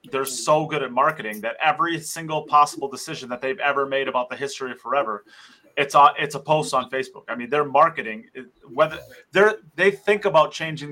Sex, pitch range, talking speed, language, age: male, 130-155 Hz, 200 wpm, English, 30-49